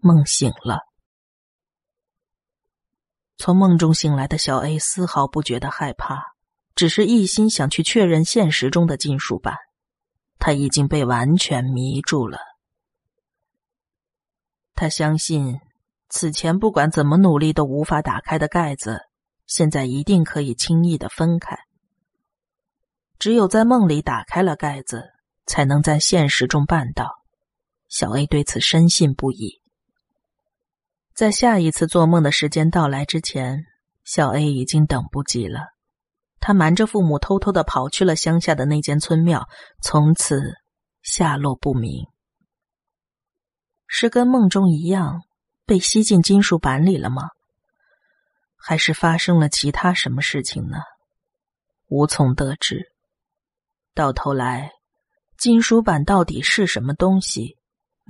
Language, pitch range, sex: Chinese, 140-185 Hz, female